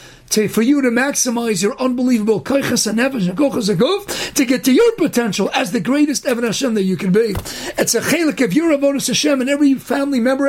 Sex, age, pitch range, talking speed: male, 50-69, 215-285 Hz, 185 wpm